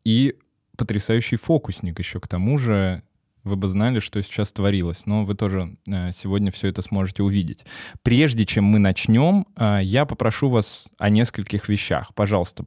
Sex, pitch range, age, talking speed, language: male, 105-125 Hz, 20-39, 150 wpm, Russian